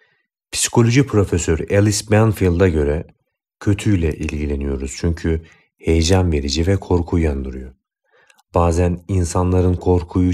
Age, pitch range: 40-59, 80-100 Hz